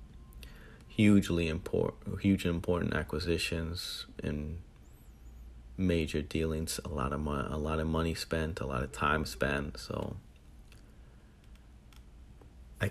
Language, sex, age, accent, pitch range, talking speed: English, male, 30-49, American, 70-85 Hz, 110 wpm